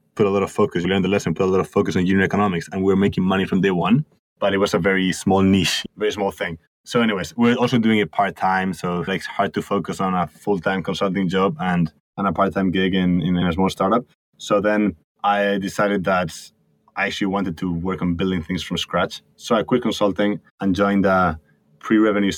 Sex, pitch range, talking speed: male, 95-105 Hz, 225 wpm